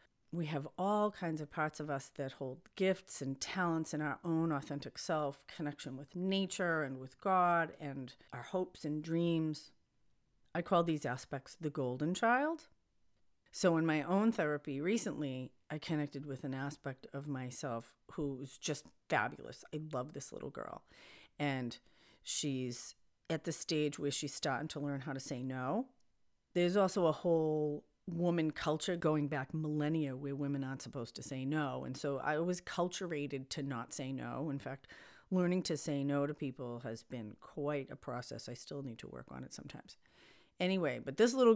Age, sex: 40-59, female